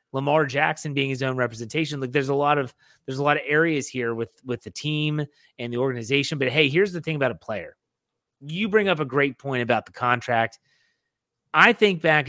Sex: male